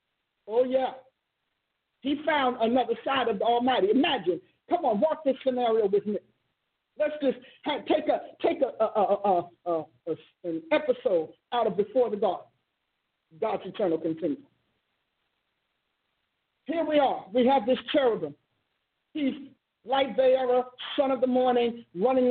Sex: male